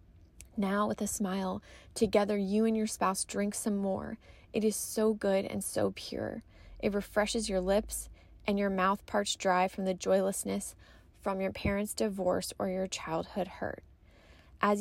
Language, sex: English, female